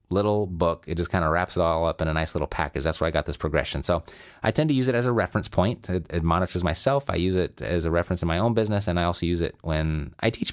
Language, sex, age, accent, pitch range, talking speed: English, male, 30-49, American, 85-110 Hz, 300 wpm